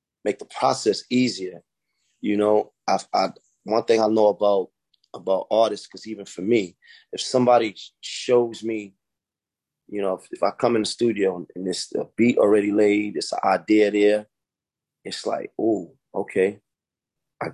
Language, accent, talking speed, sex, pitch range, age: English, American, 155 wpm, male, 95-110 Hz, 30-49